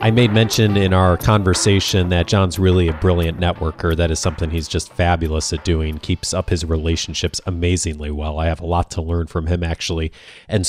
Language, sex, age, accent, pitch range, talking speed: English, male, 30-49, American, 85-105 Hz, 200 wpm